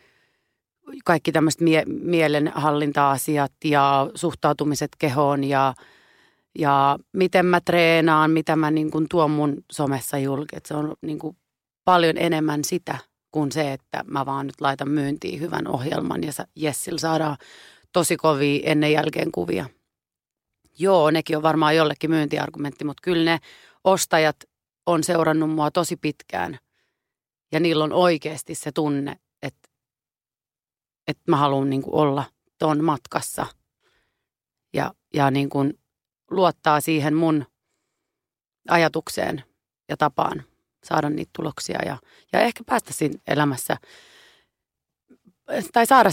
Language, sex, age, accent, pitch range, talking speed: Finnish, female, 30-49, native, 145-170 Hz, 120 wpm